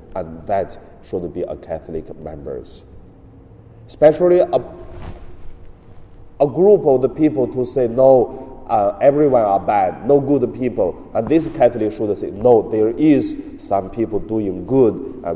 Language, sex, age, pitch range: Chinese, male, 30-49, 95-135 Hz